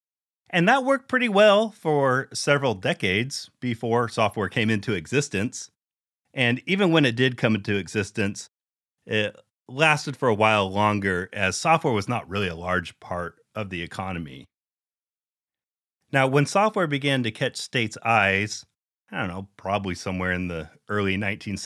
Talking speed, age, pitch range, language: 150 wpm, 30-49, 100-135 Hz, English